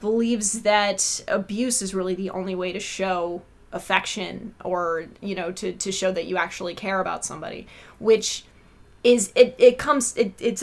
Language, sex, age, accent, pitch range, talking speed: English, female, 20-39, American, 195-235 Hz, 170 wpm